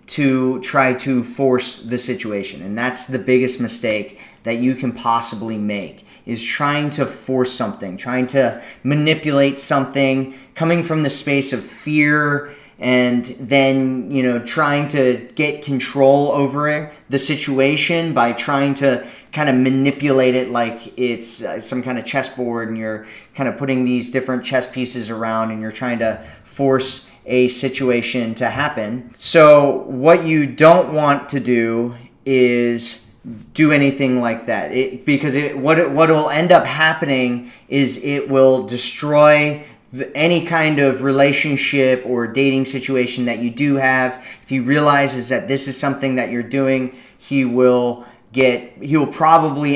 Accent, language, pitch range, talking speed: American, English, 125-140 Hz, 150 wpm